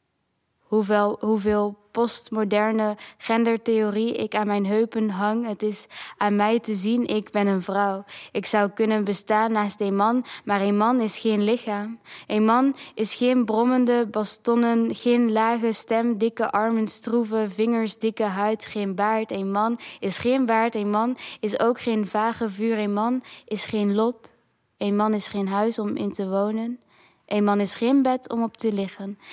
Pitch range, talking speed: 200-225 Hz, 170 wpm